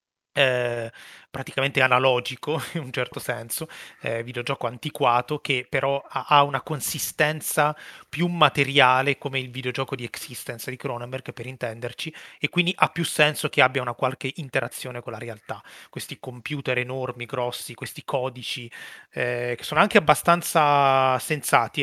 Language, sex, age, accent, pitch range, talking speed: Italian, male, 30-49, native, 125-145 Hz, 140 wpm